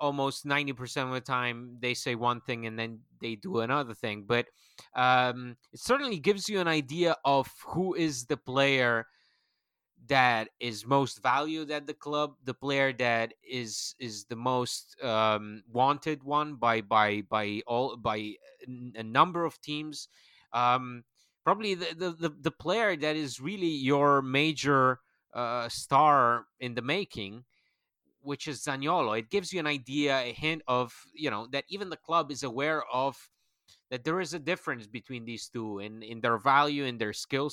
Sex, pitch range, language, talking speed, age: male, 115-145 Hz, English, 170 wpm, 30-49